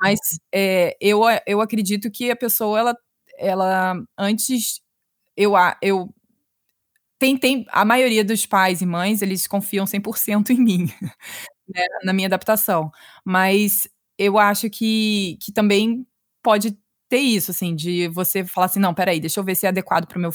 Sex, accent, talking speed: female, Brazilian, 160 wpm